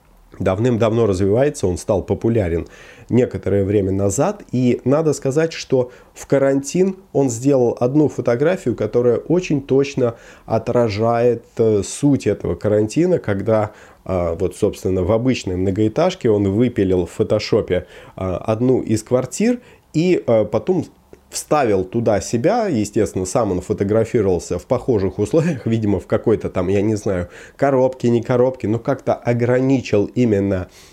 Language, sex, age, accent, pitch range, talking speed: Russian, male, 20-39, native, 95-125 Hz, 125 wpm